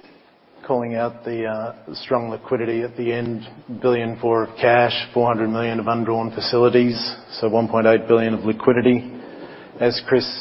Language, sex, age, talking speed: English, male, 40-59, 145 wpm